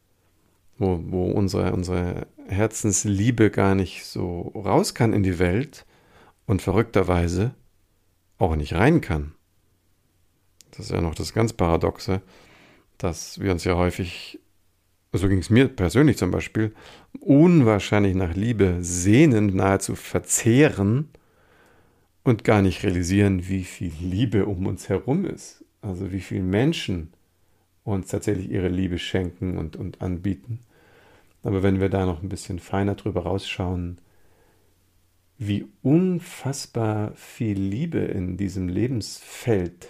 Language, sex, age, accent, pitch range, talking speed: German, male, 50-69, German, 90-105 Hz, 125 wpm